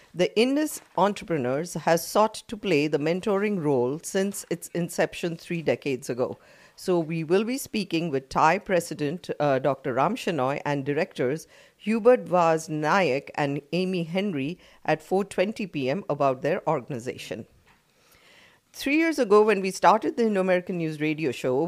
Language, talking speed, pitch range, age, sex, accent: English, 145 wpm, 150-205 Hz, 50-69, female, Indian